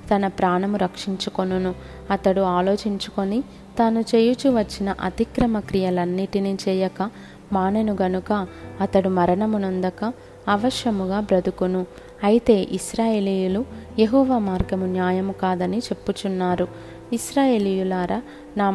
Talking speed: 80 wpm